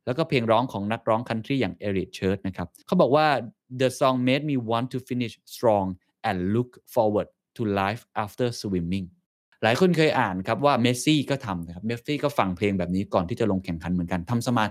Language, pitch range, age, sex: Thai, 95-130 Hz, 20-39, male